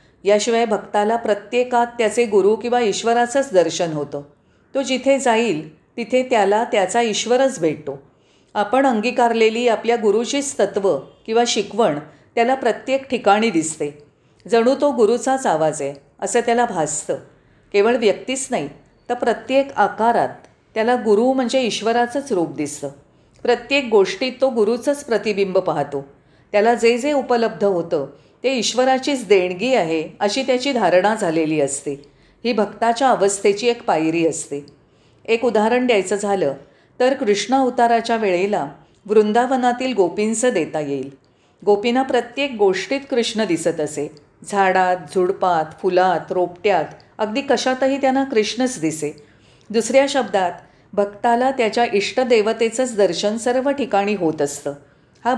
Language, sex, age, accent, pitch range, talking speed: Marathi, female, 40-59, native, 175-245 Hz, 120 wpm